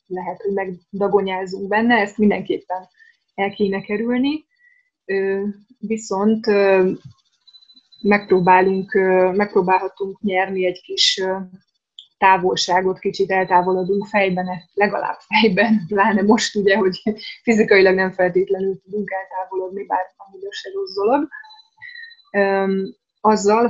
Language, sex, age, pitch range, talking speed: Hungarian, female, 20-39, 190-220 Hz, 85 wpm